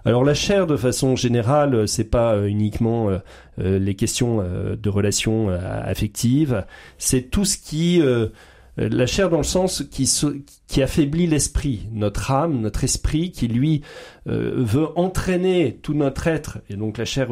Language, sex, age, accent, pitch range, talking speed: French, male, 40-59, French, 110-135 Hz, 145 wpm